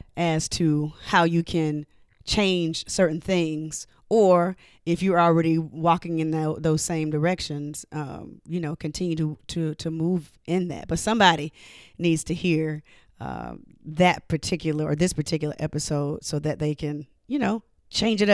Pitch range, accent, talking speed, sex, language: 160-200 Hz, American, 155 wpm, female, English